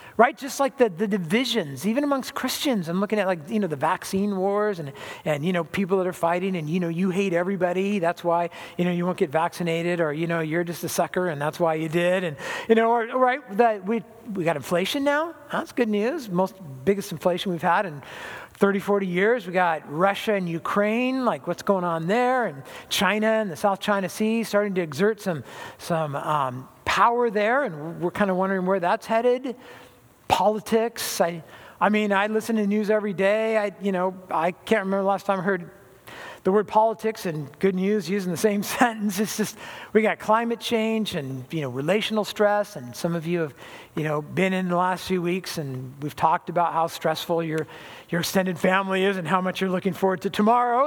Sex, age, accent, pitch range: male, 50-69, American, 175-215 Hz